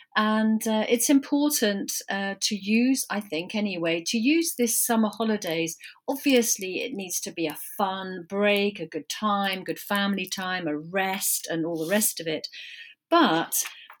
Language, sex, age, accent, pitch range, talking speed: English, female, 40-59, British, 185-245 Hz, 165 wpm